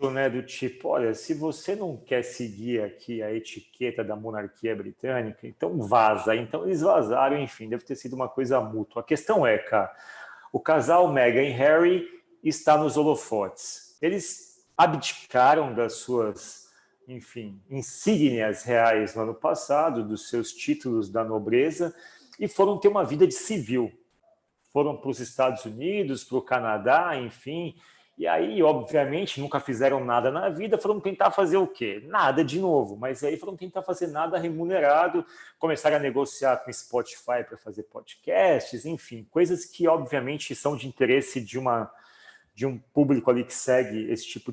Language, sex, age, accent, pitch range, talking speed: Portuguese, male, 40-59, Brazilian, 120-180 Hz, 160 wpm